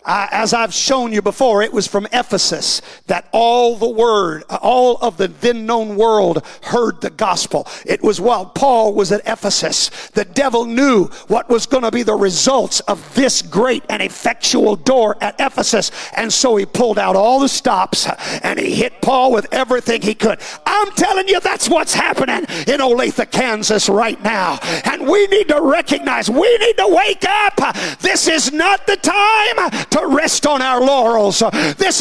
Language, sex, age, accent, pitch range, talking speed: English, male, 50-69, American, 240-335 Hz, 180 wpm